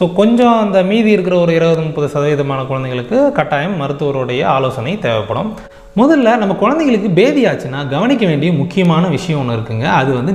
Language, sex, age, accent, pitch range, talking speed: Tamil, male, 30-49, native, 125-205 Hz, 150 wpm